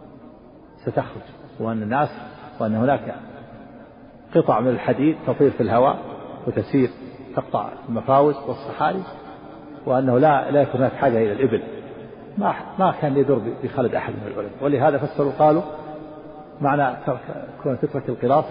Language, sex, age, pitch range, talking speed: Arabic, male, 50-69, 125-145 Hz, 125 wpm